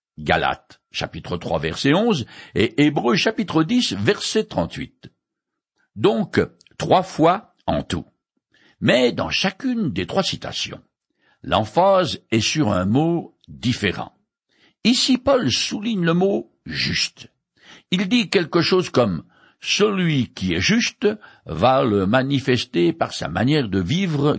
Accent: French